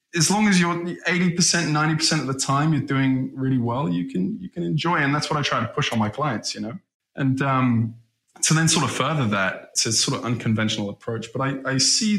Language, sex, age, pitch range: English, male, 20-39, 110-140 Hz